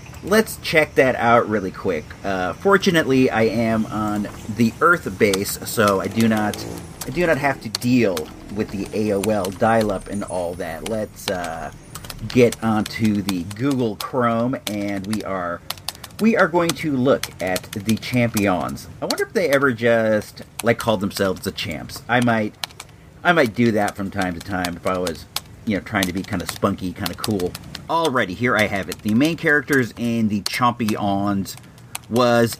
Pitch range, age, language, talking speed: 100-130 Hz, 40-59, English, 180 wpm